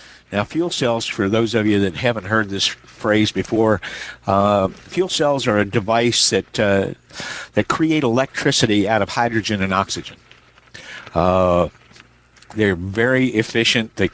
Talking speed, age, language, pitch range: 145 wpm, 60-79, English, 95-115 Hz